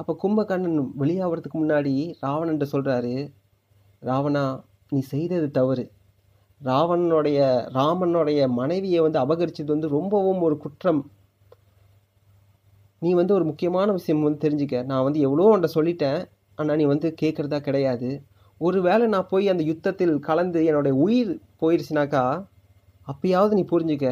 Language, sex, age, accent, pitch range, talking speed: Tamil, male, 30-49, native, 125-165 Hz, 120 wpm